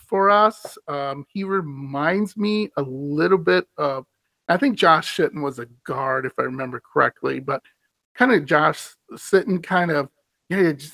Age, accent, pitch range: 40-59, American, 145-210 Hz